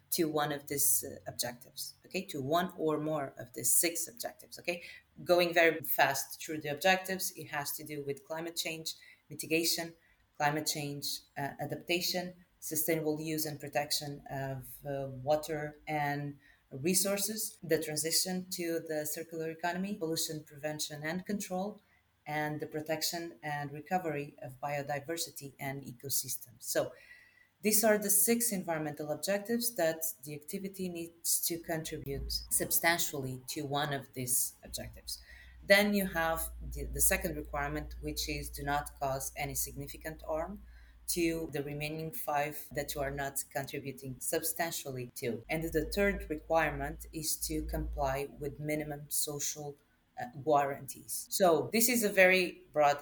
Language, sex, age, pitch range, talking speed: English, female, 30-49, 145-170 Hz, 140 wpm